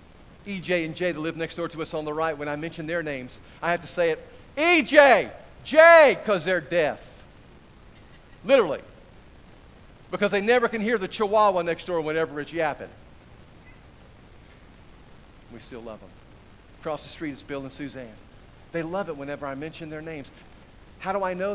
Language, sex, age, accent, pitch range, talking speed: English, male, 50-69, American, 120-175 Hz, 175 wpm